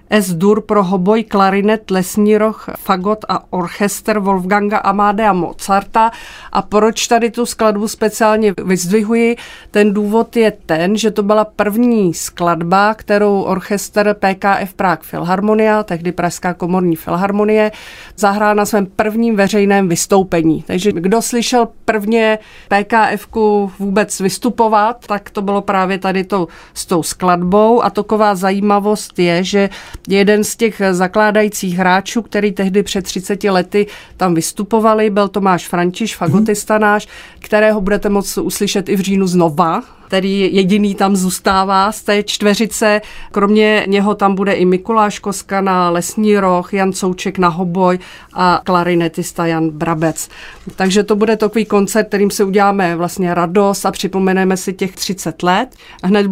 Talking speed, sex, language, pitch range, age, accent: 140 wpm, female, Czech, 185-210 Hz, 40-59, native